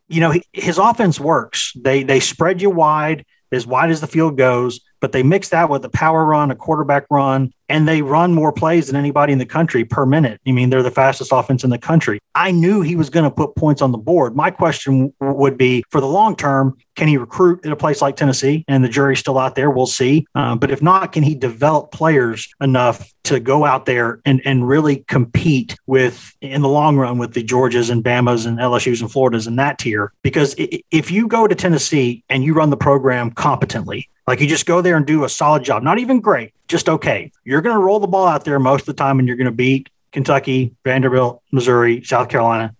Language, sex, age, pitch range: English, male, 40-59, 125-155 Hz